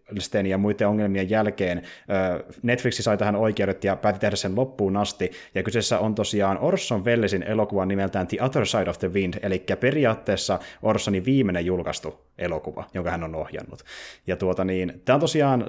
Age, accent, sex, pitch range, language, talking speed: 20-39, native, male, 95-110 Hz, Finnish, 170 wpm